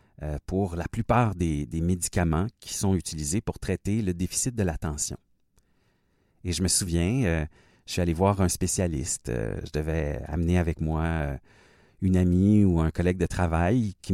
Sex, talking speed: male, 160 wpm